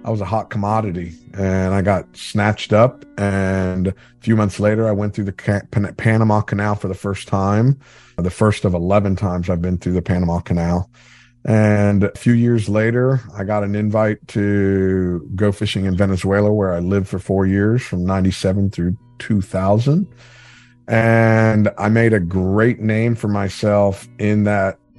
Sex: male